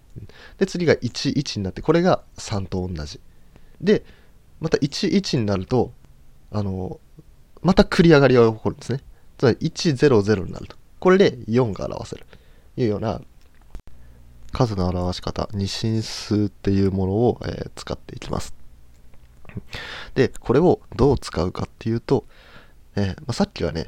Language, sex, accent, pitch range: Japanese, male, native, 90-130 Hz